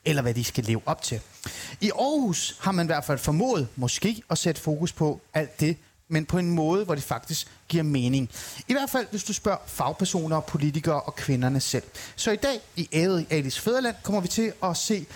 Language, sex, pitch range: Danish, male, 135-190 Hz